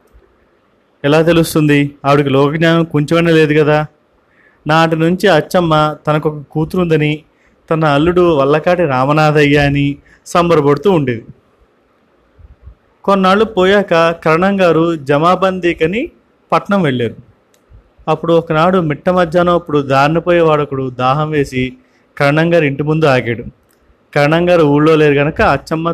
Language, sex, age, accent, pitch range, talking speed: Telugu, male, 30-49, native, 140-175 Hz, 100 wpm